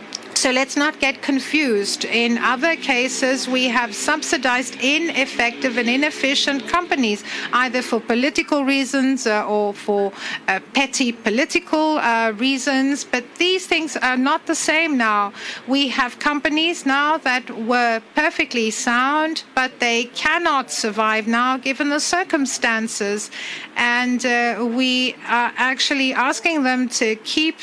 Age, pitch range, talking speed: 60-79, 235-285 Hz, 130 wpm